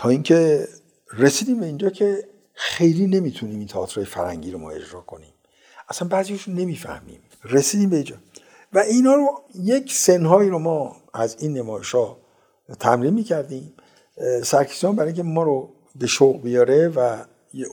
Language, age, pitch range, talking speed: Persian, 60-79, 125-190 Hz, 130 wpm